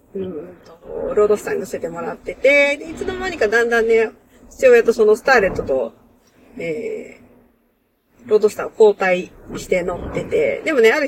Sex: female